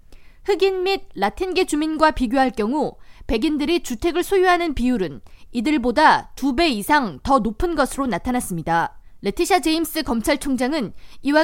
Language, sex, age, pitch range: Korean, female, 20-39, 245-335 Hz